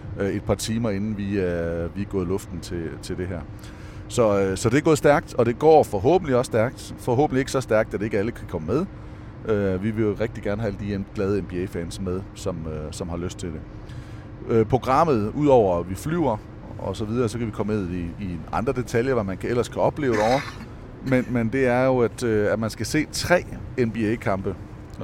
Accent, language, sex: Danish, English, male